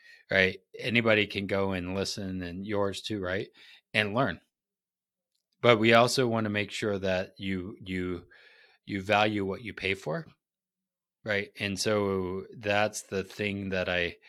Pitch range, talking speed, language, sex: 95-115 Hz, 150 wpm, English, male